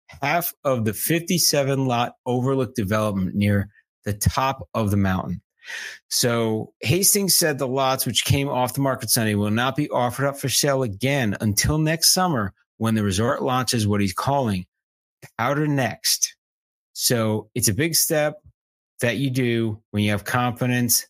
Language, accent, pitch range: English, American, 110-145 Hz